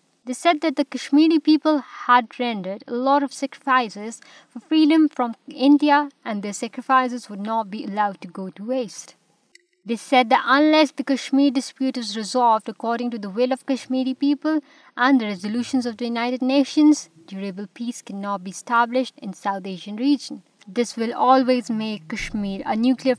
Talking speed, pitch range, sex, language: 170 wpm, 210-270 Hz, female, Urdu